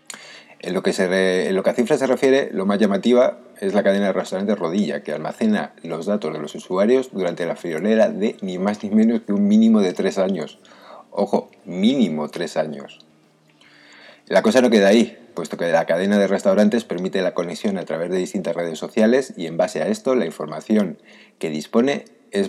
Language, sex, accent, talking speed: Spanish, male, Spanish, 205 wpm